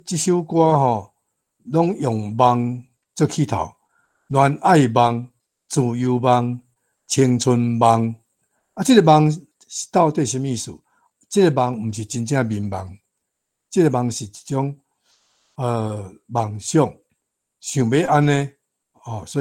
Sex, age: male, 60-79